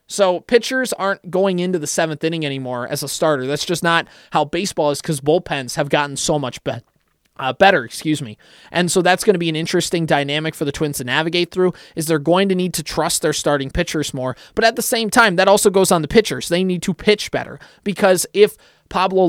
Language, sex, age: English, male, 20-39